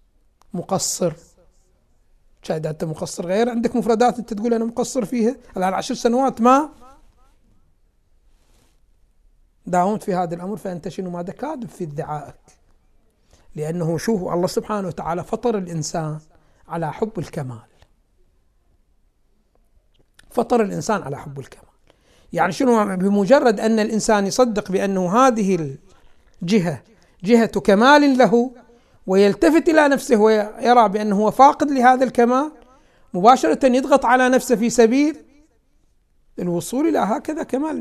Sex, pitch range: male, 170-240 Hz